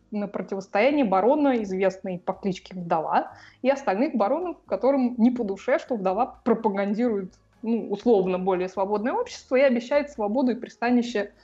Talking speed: 140 wpm